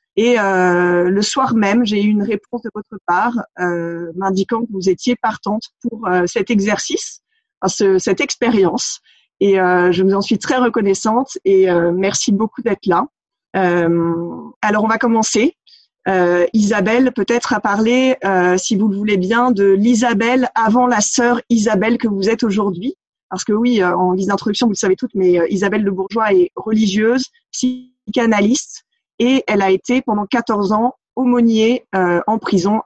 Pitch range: 195-245 Hz